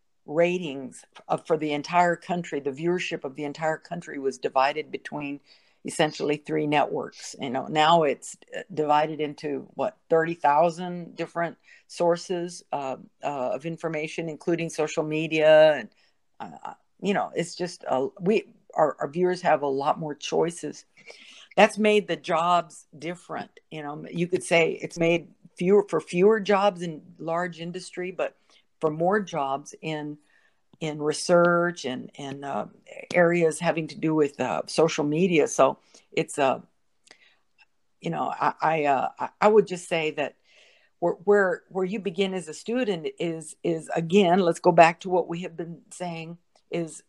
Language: English